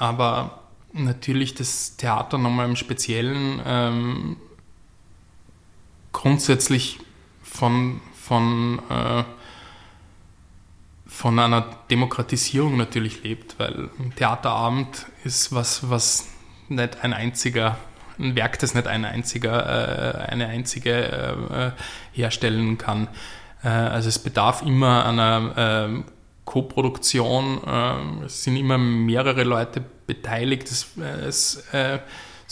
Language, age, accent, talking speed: German, 20-39, German, 105 wpm